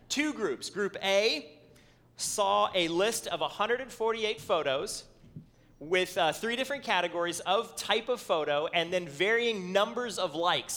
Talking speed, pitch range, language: 140 wpm, 165-230 Hz, English